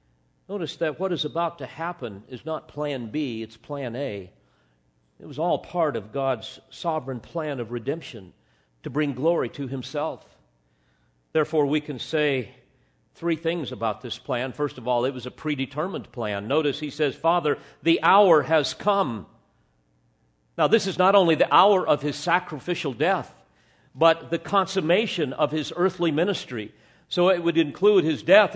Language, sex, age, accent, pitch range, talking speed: English, male, 50-69, American, 120-175 Hz, 165 wpm